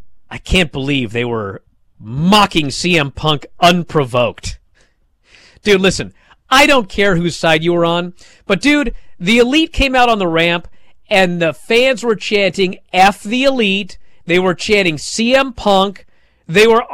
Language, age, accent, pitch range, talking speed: English, 40-59, American, 155-225 Hz, 150 wpm